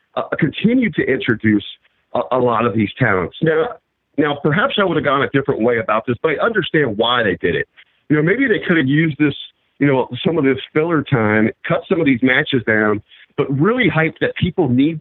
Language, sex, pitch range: English, male, 120-155 Hz